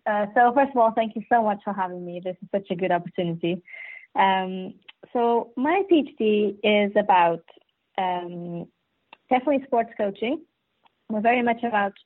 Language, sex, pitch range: English, female, 200-230 Hz